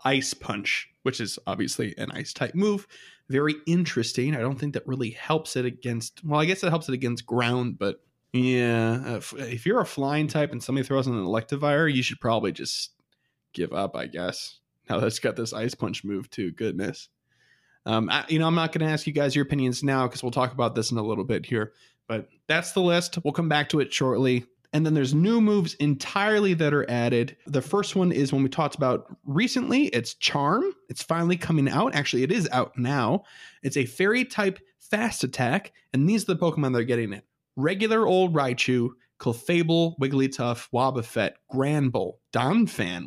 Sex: male